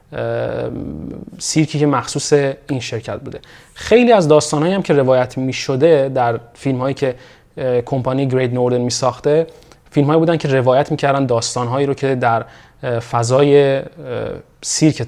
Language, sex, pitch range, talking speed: Persian, male, 125-150 Hz, 130 wpm